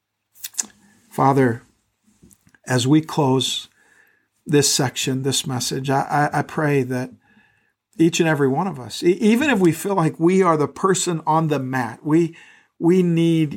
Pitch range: 130-165 Hz